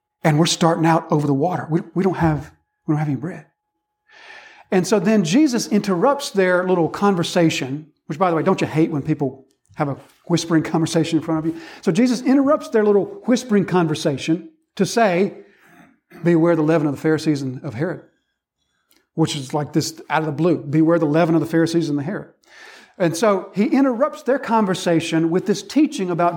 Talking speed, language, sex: 190 wpm, English, male